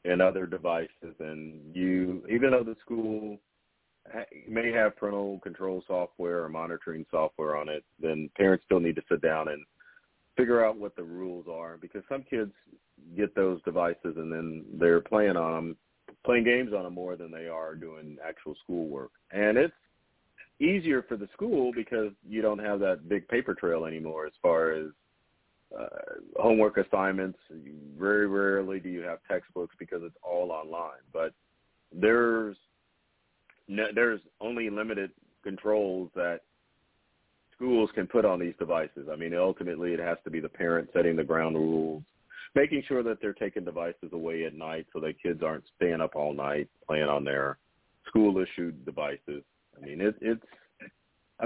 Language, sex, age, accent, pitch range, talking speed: English, male, 40-59, American, 80-110 Hz, 165 wpm